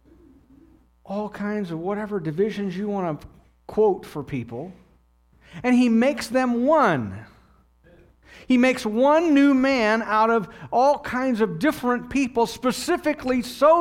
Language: English